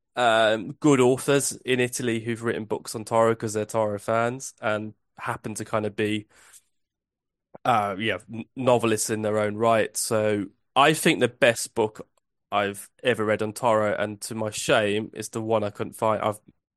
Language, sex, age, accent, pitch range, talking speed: English, male, 20-39, British, 105-115 Hz, 175 wpm